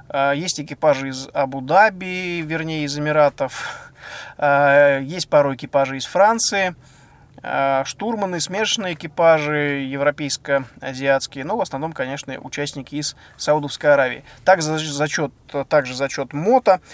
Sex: male